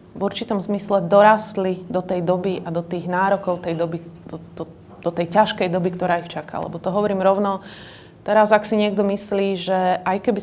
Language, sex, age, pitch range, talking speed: Slovak, female, 30-49, 170-195 Hz, 195 wpm